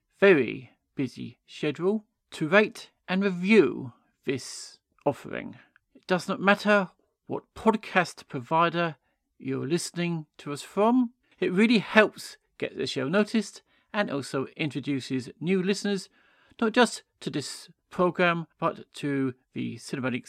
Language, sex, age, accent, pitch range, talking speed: English, male, 40-59, British, 150-205 Hz, 125 wpm